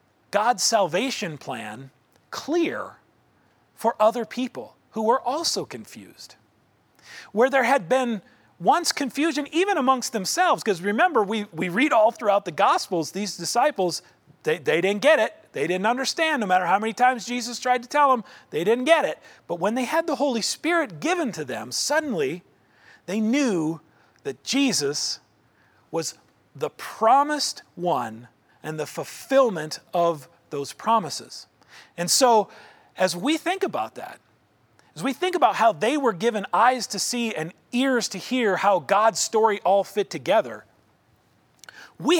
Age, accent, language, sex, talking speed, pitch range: 40-59, American, English, male, 150 wpm, 185-275 Hz